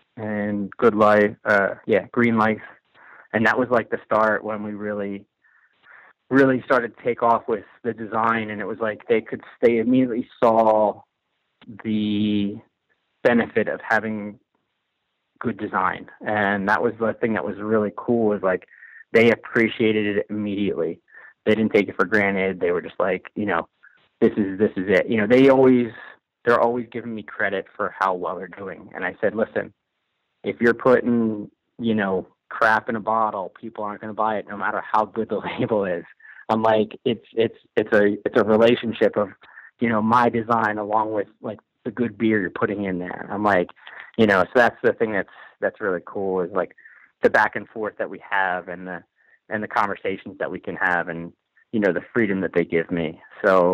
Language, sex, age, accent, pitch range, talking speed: English, male, 30-49, American, 100-115 Hz, 195 wpm